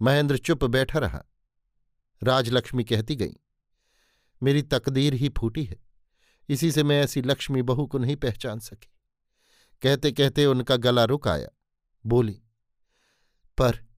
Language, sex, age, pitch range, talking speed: Hindi, male, 50-69, 115-140 Hz, 130 wpm